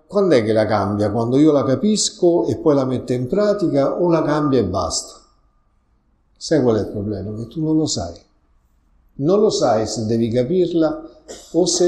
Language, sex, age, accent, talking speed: Italian, male, 60-79, native, 190 wpm